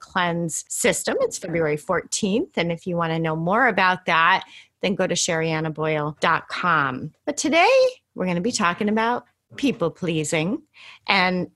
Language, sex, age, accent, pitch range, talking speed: English, female, 30-49, American, 180-260 Hz, 150 wpm